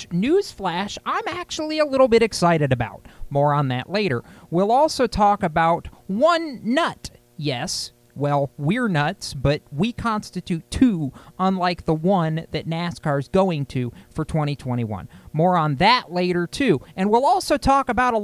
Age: 40-59